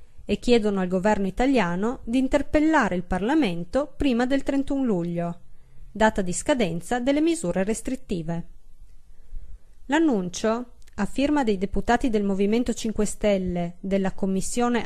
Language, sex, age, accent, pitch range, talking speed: Italian, female, 30-49, native, 190-245 Hz, 120 wpm